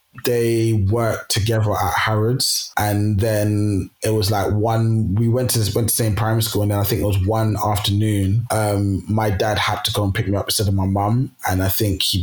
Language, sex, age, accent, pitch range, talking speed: English, male, 20-39, British, 100-110 Hz, 225 wpm